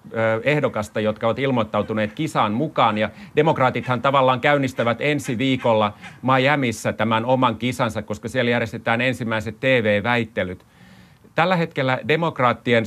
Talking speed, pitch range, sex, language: 110 wpm, 110-140 Hz, male, Finnish